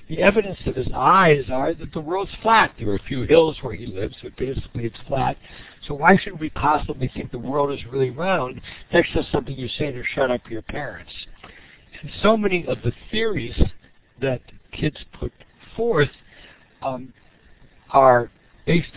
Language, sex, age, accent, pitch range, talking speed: English, male, 60-79, American, 115-150 Hz, 175 wpm